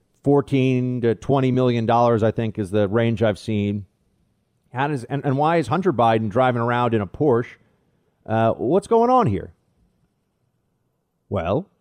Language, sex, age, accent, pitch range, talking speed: English, male, 40-59, American, 120-180 Hz, 150 wpm